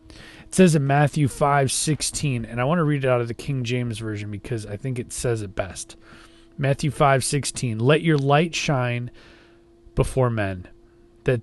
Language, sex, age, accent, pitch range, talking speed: English, male, 30-49, American, 115-150 Hz, 185 wpm